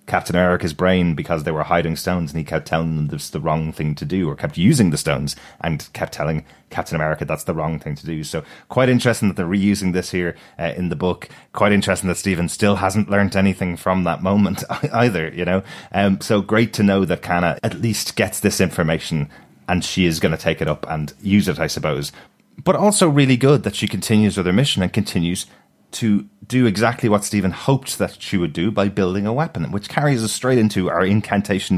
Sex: male